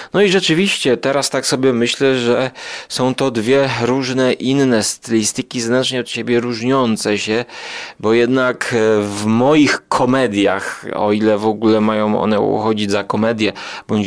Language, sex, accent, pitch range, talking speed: Polish, male, native, 115-145 Hz, 145 wpm